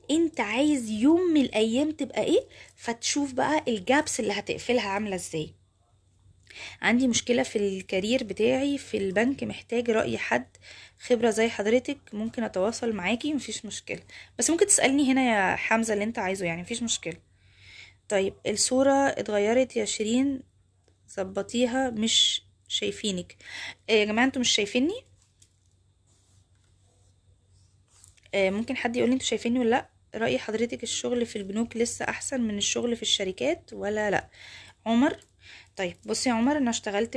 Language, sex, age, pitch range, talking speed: Arabic, female, 20-39, 195-250 Hz, 145 wpm